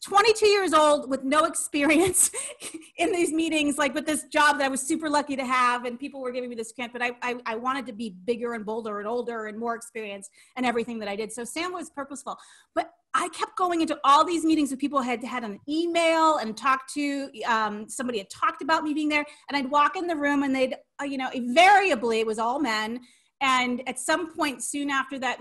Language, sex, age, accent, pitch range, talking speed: English, female, 30-49, American, 245-325 Hz, 235 wpm